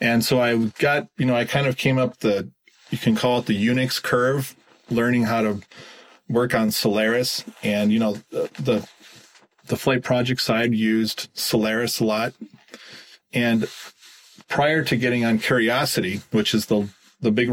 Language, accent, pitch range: English, American, 110-125 Hz